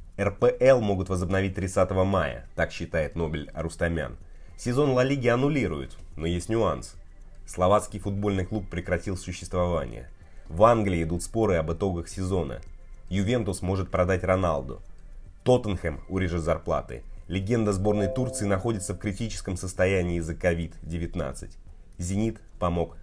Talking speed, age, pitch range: 120 wpm, 30-49, 85-100 Hz